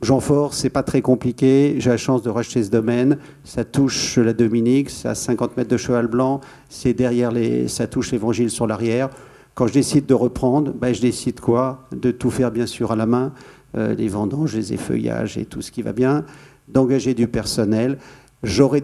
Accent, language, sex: French, French, male